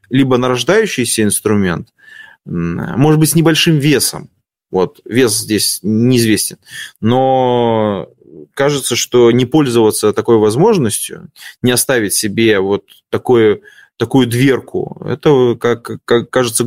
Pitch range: 105-145 Hz